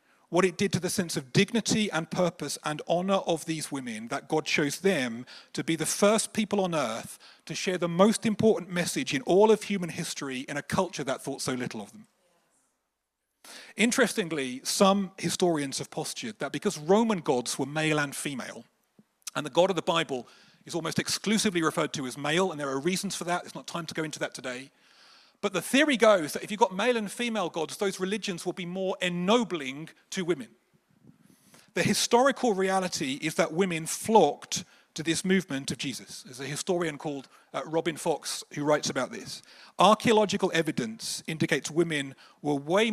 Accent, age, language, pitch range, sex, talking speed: British, 40-59, English, 155-205 Hz, male, 190 wpm